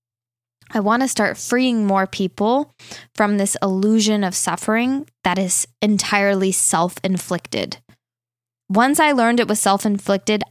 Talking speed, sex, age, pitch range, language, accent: 125 wpm, female, 10-29, 185-225 Hz, English, American